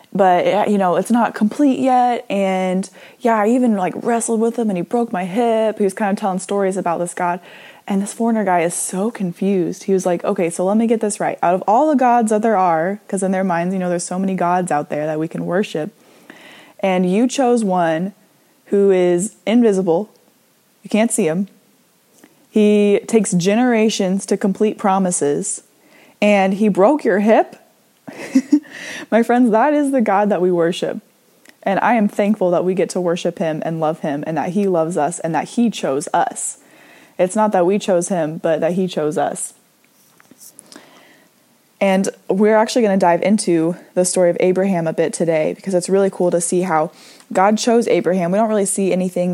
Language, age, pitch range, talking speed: English, 20-39, 180-220 Hz, 200 wpm